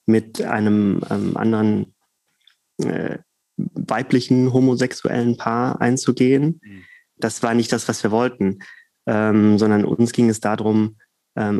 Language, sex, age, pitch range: German, male, 30-49, 105-125 Hz